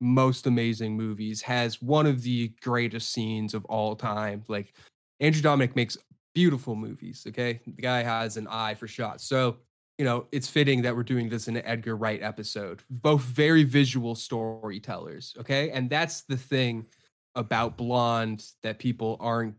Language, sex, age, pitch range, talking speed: English, male, 10-29, 110-130 Hz, 165 wpm